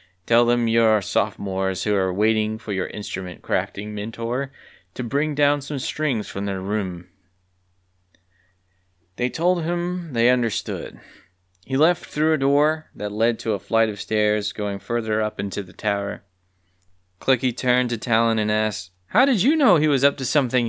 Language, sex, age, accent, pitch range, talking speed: English, male, 20-39, American, 95-140 Hz, 165 wpm